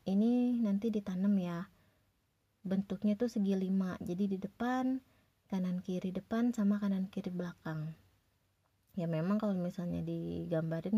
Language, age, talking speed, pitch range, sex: Indonesian, 20-39, 115 wpm, 170-215 Hz, female